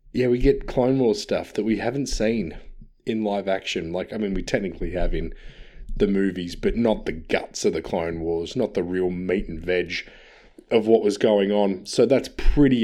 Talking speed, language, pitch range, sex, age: 205 wpm, English, 95-120 Hz, male, 20-39